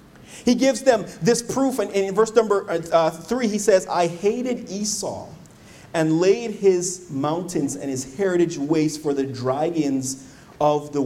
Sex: male